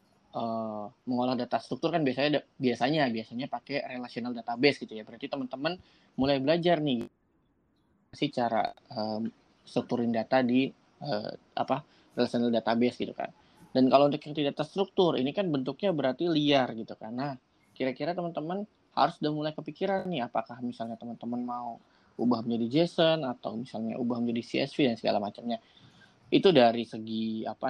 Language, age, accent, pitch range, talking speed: Indonesian, 20-39, native, 120-140 Hz, 150 wpm